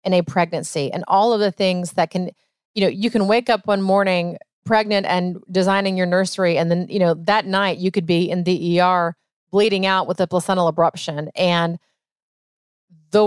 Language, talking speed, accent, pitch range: English, 195 wpm, American, 175-215 Hz